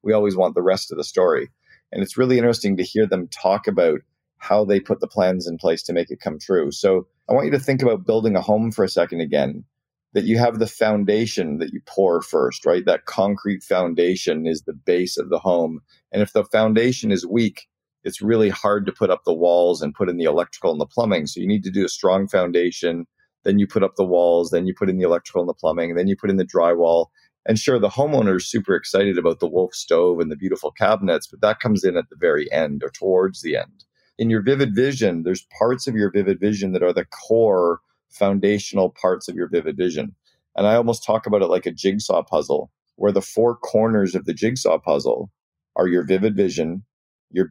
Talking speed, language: 230 wpm, English